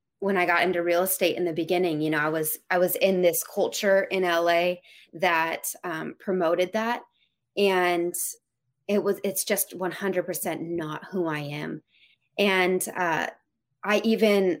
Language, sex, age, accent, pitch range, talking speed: English, female, 20-39, American, 170-205 Hz, 155 wpm